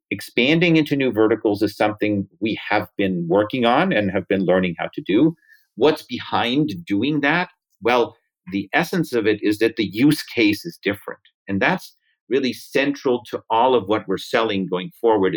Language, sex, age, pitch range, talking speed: English, male, 50-69, 100-140 Hz, 180 wpm